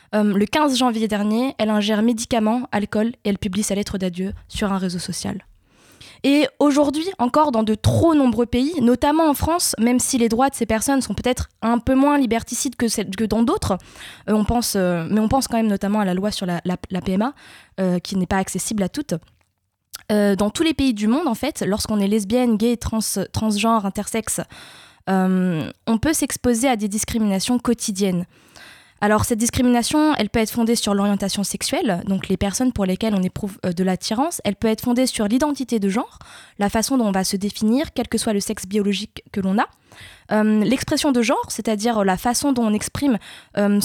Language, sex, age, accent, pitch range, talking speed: French, female, 20-39, French, 200-245 Hz, 205 wpm